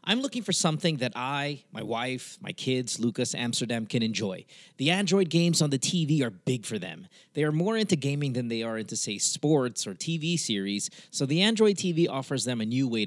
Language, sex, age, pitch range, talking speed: English, male, 30-49, 125-185 Hz, 215 wpm